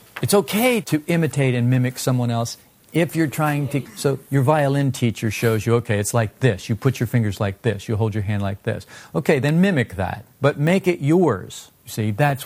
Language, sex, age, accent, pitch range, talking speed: English, male, 50-69, American, 110-140 Hz, 210 wpm